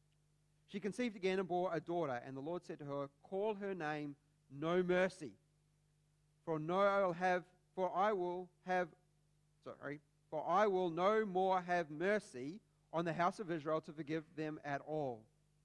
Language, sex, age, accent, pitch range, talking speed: English, male, 40-59, Australian, 150-200 Hz, 175 wpm